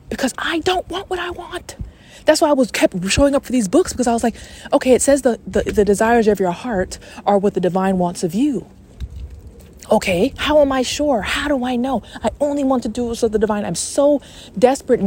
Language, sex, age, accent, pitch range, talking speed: English, female, 20-39, American, 175-250 Hz, 230 wpm